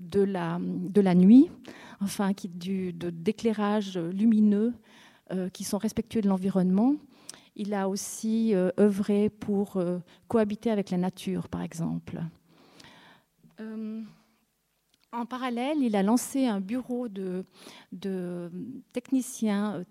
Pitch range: 195-235 Hz